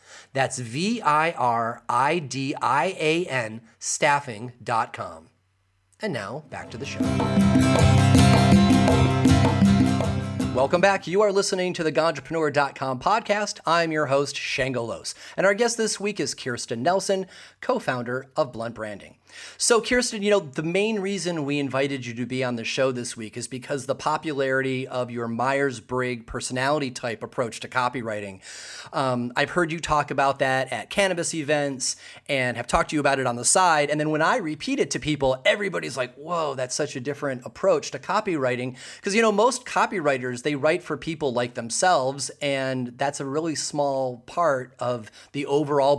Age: 30-49